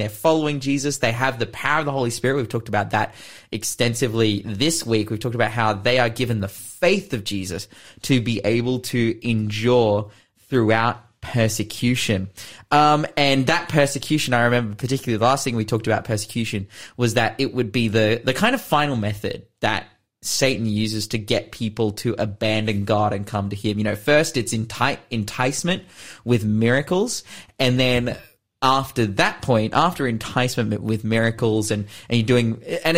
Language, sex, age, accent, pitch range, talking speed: English, male, 20-39, Australian, 110-130 Hz, 175 wpm